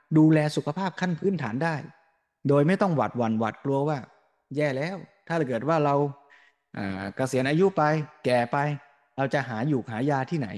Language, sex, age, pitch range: Thai, male, 20-39, 120-155 Hz